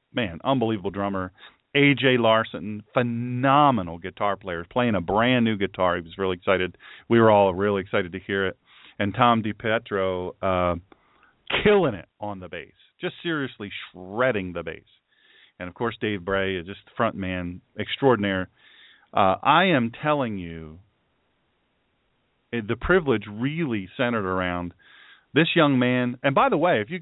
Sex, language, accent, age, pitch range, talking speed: male, English, American, 40-59, 100-135 Hz, 155 wpm